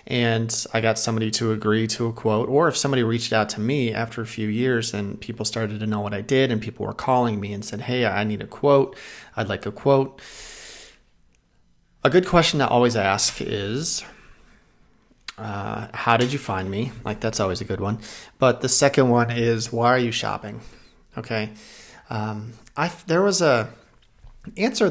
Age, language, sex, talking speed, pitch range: 30-49, English, male, 190 wpm, 105-125 Hz